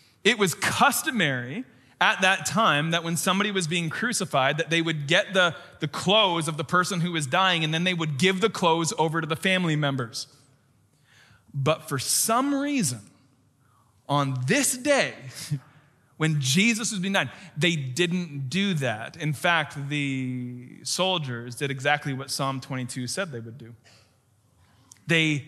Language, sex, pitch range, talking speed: English, male, 125-160 Hz, 160 wpm